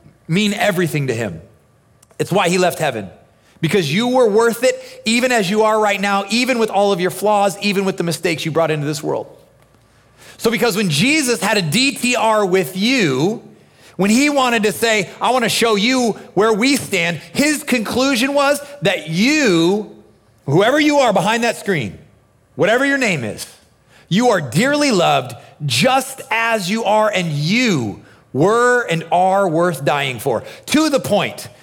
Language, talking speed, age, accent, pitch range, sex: English, 175 wpm, 30-49, American, 180-250 Hz, male